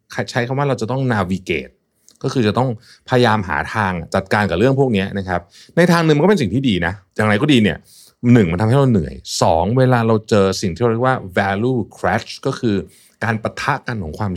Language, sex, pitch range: Thai, male, 95-130 Hz